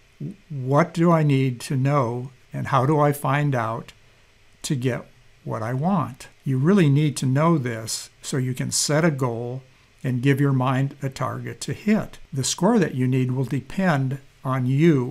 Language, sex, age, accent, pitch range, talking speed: English, male, 60-79, American, 125-150 Hz, 185 wpm